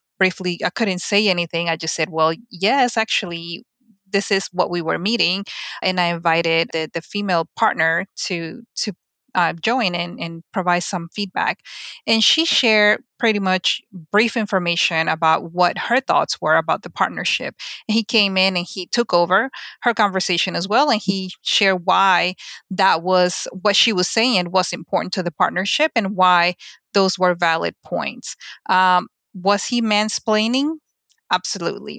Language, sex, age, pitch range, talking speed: English, female, 20-39, 180-220 Hz, 160 wpm